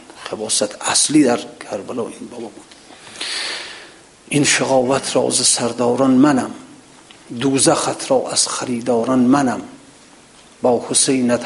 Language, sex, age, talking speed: Persian, male, 50-69, 110 wpm